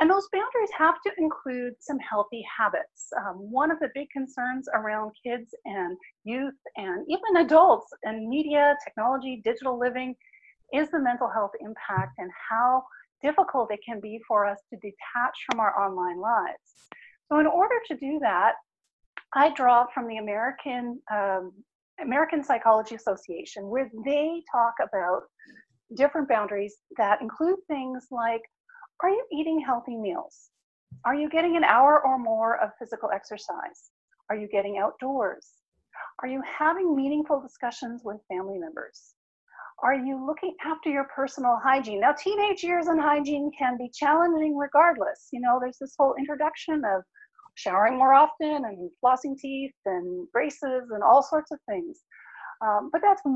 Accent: American